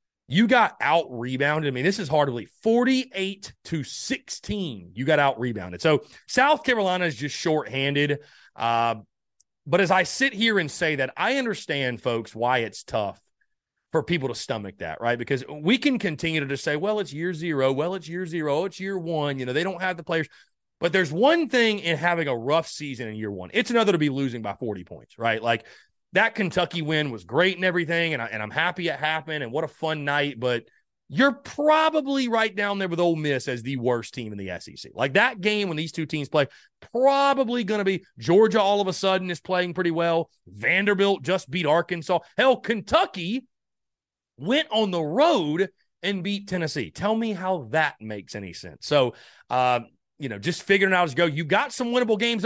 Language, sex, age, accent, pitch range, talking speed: English, male, 30-49, American, 140-205 Hz, 205 wpm